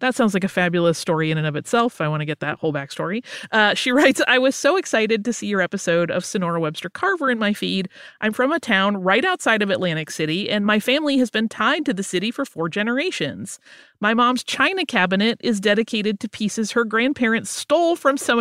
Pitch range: 175-255 Hz